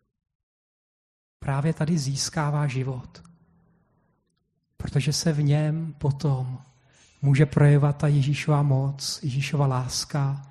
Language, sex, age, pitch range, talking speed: Czech, male, 40-59, 130-160 Hz, 90 wpm